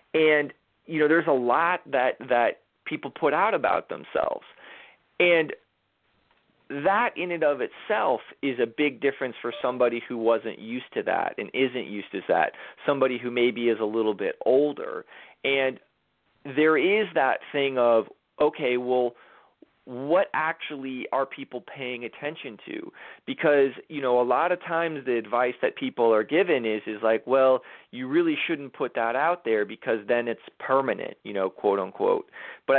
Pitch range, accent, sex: 125-185 Hz, American, male